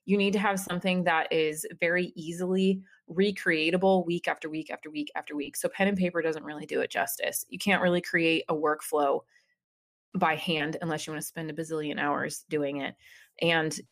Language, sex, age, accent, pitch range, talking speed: English, female, 20-39, American, 155-180 Hz, 195 wpm